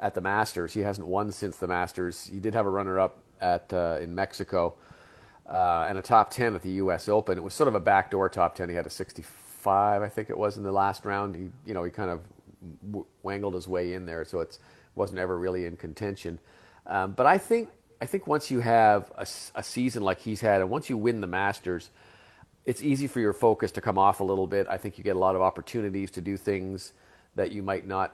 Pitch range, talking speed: 90-110 Hz, 245 wpm